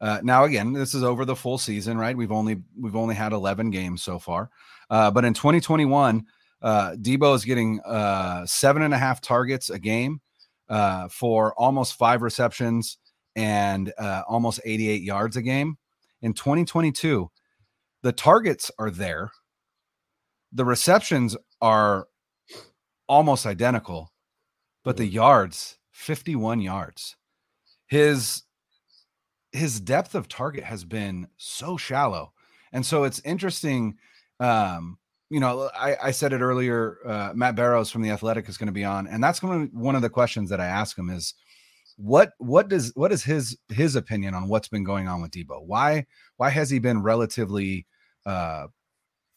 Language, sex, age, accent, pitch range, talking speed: English, male, 30-49, American, 105-135 Hz, 165 wpm